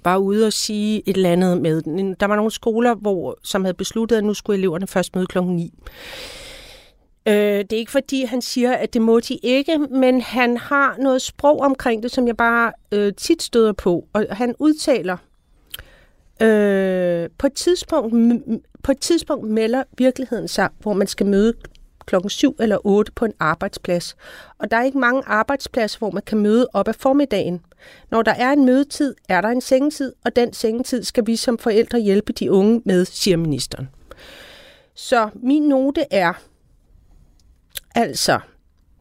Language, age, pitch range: Danish, 40-59, 185-250 Hz